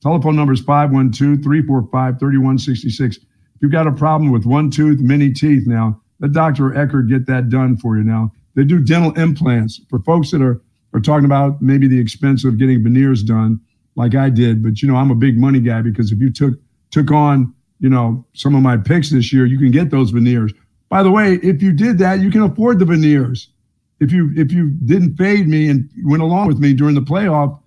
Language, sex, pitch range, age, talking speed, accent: English, male, 125-150 Hz, 50-69, 215 wpm, American